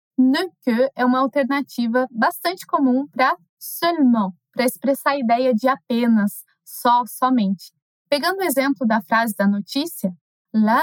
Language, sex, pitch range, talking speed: Portuguese, female, 230-295 Hz, 140 wpm